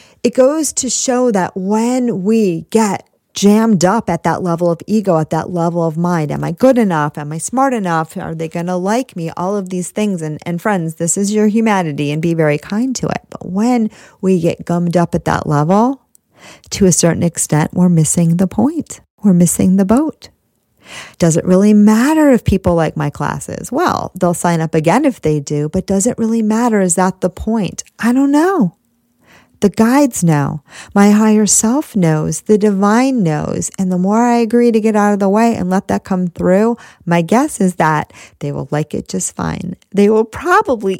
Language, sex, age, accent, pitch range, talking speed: English, female, 40-59, American, 170-225 Hz, 205 wpm